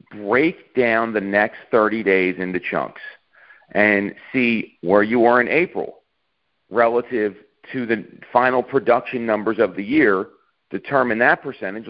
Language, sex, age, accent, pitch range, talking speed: English, male, 40-59, American, 105-140 Hz, 135 wpm